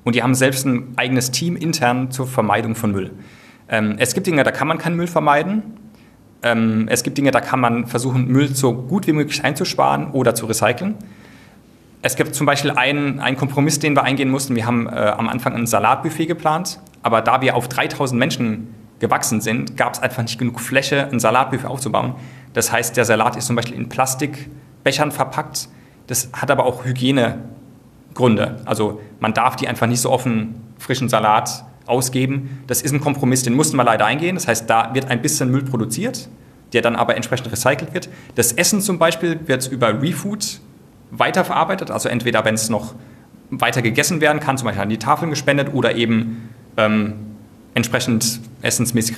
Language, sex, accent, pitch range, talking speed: German, male, German, 115-140 Hz, 185 wpm